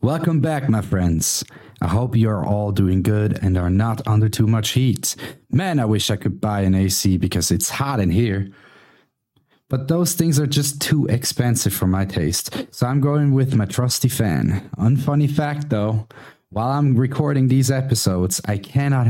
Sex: male